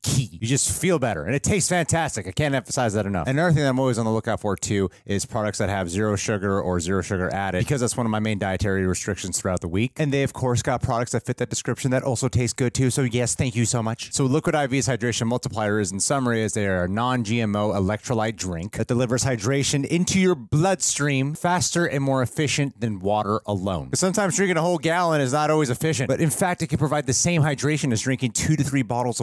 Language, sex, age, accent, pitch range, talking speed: English, male, 30-49, American, 110-155 Hz, 245 wpm